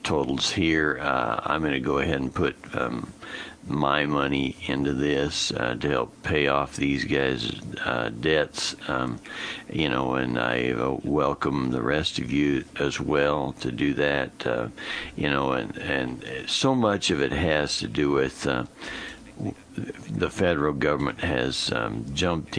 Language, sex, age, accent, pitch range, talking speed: English, male, 60-79, American, 65-75 Hz, 160 wpm